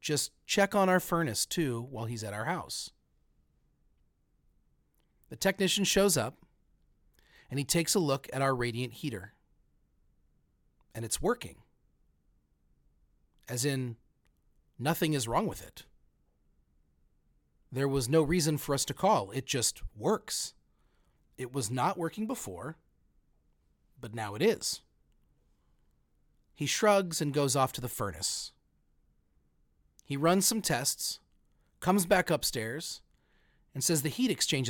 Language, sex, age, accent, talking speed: English, male, 40-59, American, 130 wpm